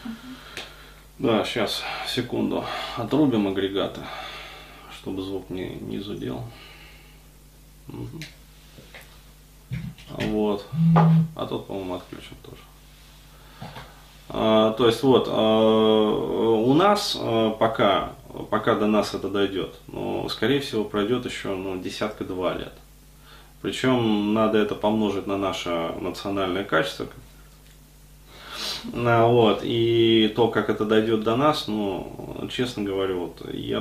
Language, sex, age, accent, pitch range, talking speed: Russian, male, 20-39, native, 100-120 Hz, 100 wpm